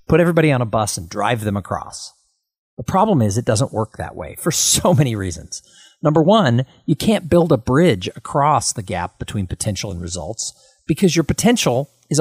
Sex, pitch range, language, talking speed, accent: male, 115-170 Hz, English, 190 wpm, American